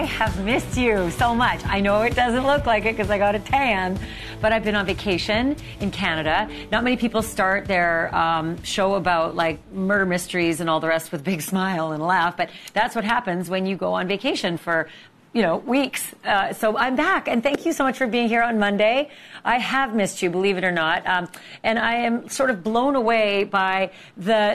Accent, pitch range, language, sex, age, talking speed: American, 170-225 Hz, English, female, 40-59, 220 wpm